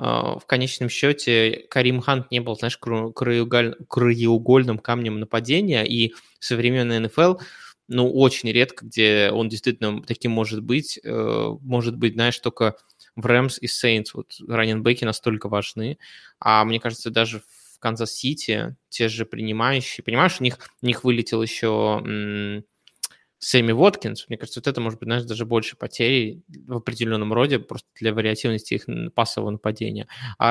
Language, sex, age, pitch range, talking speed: Russian, male, 20-39, 110-125 Hz, 145 wpm